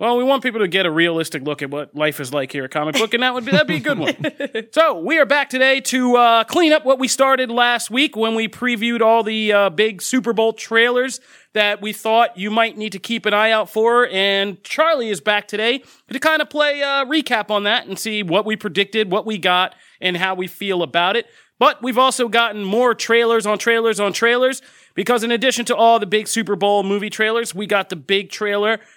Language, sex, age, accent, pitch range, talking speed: English, male, 30-49, American, 185-235 Hz, 240 wpm